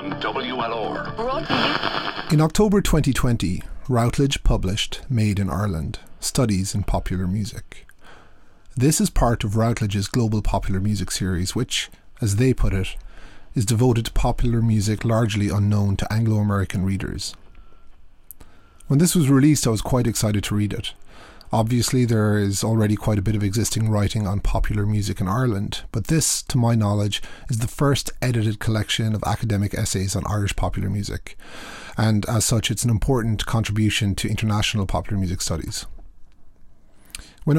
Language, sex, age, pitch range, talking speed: English, male, 30-49, 100-115 Hz, 145 wpm